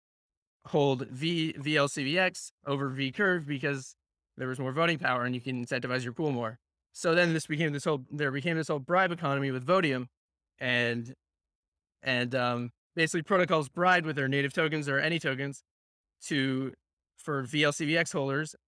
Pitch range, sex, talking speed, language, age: 130-160 Hz, male, 155 wpm, English, 20-39